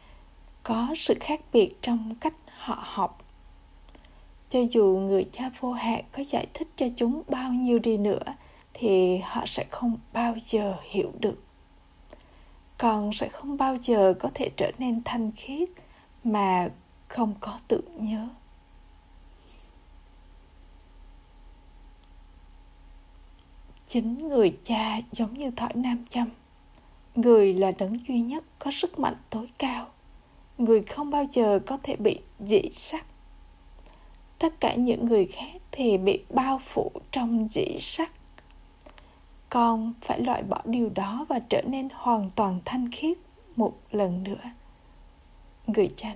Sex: female